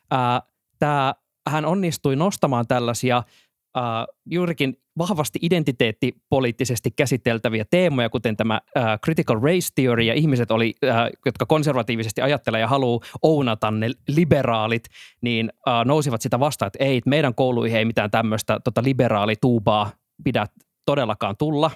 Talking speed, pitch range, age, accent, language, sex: 125 wpm, 115-155 Hz, 20-39, native, Finnish, male